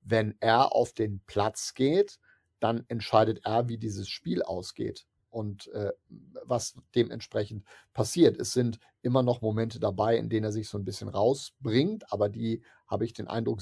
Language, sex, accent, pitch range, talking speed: German, male, German, 110-130 Hz, 170 wpm